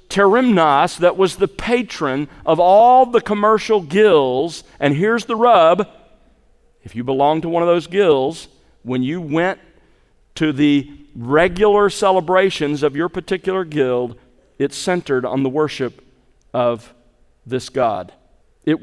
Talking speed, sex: 135 wpm, male